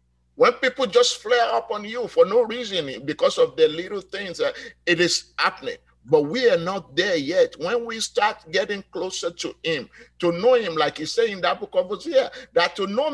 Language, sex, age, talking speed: English, male, 50-69, 210 wpm